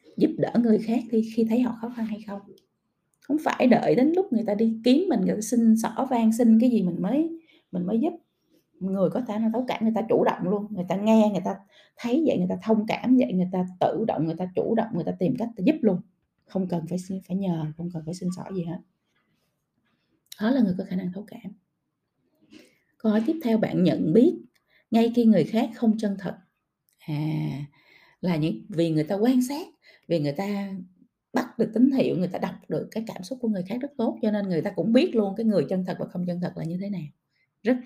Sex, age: female, 20-39